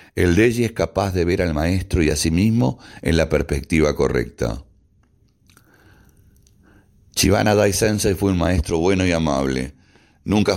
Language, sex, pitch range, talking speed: Spanish, male, 80-100 Hz, 140 wpm